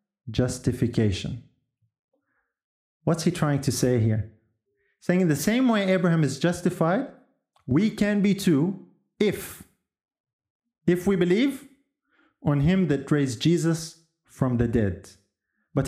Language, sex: English, male